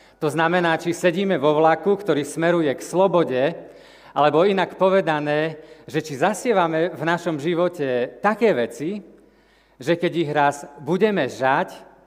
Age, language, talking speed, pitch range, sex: 40-59, Slovak, 135 wpm, 145-175 Hz, male